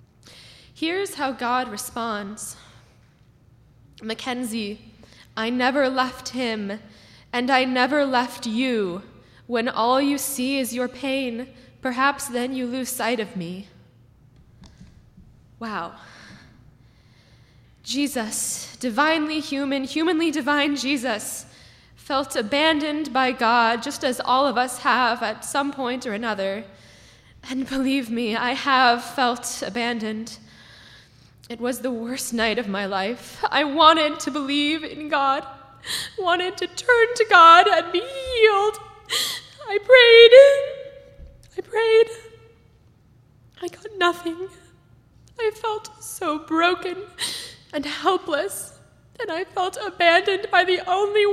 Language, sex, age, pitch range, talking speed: English, female, 10-29, 235-350 Hz, 115 wpm